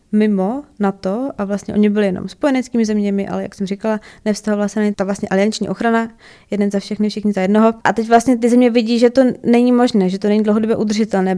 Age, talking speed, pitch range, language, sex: 20-39, 220 wpm, 200-235 Hz, Czech, female